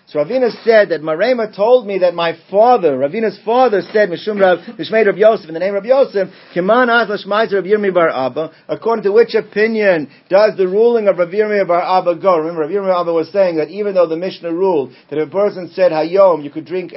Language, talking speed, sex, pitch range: English, 230 wpm, male, 180-225 Hz